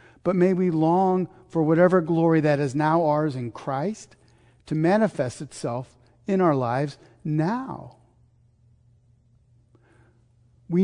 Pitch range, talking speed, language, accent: 120-170 Hz, 115 wpm, English, American